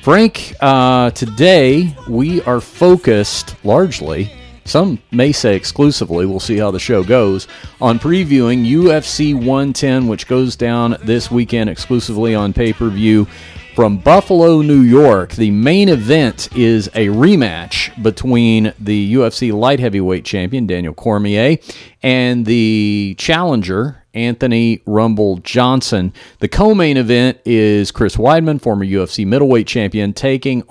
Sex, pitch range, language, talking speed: male, 100-125 Hz, English, 125 wpm